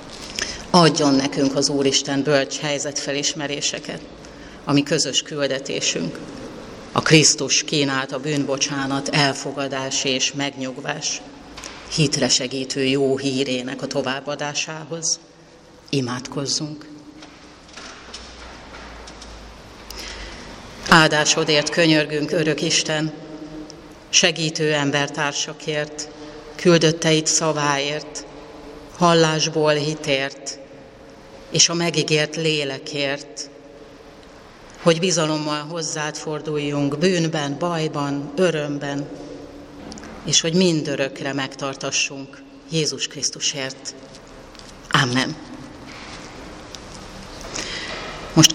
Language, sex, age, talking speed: Hungarian, female, 30-49, 65 wpm